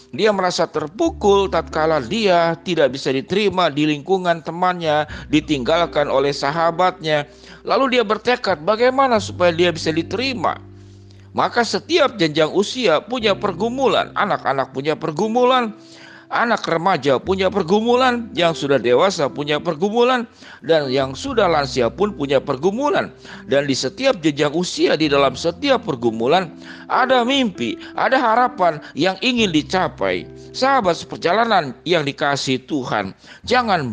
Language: Indonesian